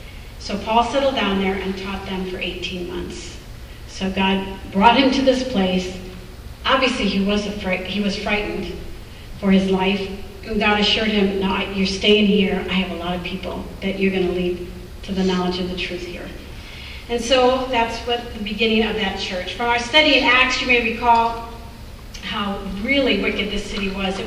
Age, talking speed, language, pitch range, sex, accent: 40-59, 195 wpm, English, 185-225 Hz, female, American